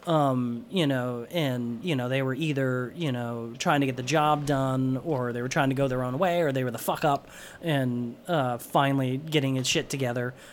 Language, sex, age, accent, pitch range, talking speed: English, male, 30-49, American, 125-155 Hz, 220 wpm